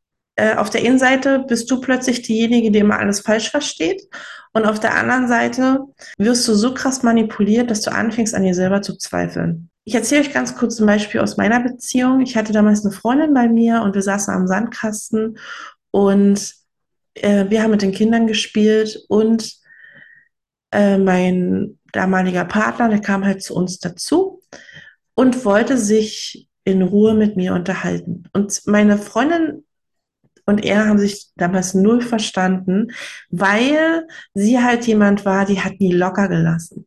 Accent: German